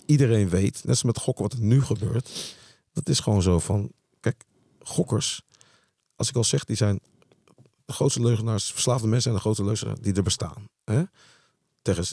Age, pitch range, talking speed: 40-59, 100-130 Hz, 185 wpm